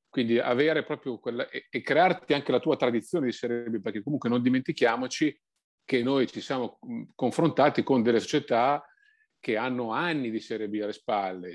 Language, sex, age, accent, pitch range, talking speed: Italian, male, 40-59, native, 110-135 Hz, 175 wpm